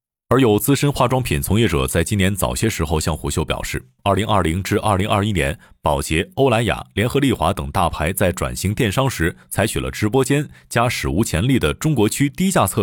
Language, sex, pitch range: Chinese, male, 85-125 Hz